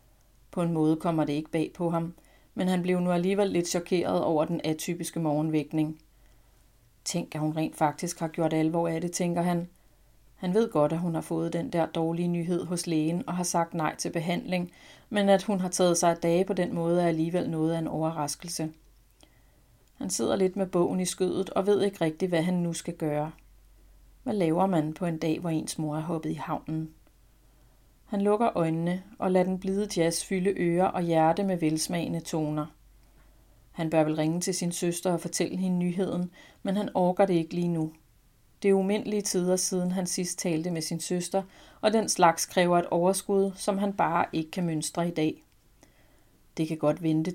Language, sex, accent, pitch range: Danish, female, native, 160-185 Hz